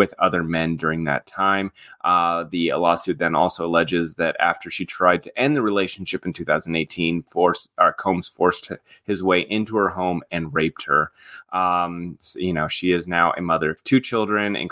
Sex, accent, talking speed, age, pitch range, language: male, American, 190 wpm, 30-49, 85-95 Hz, English